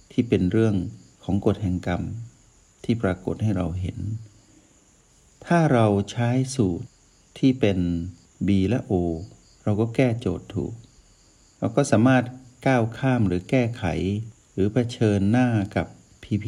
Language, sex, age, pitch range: Thai, male, 60-79, 95-120 Hz